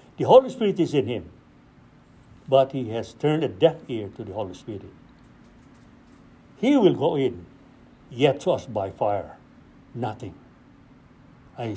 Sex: male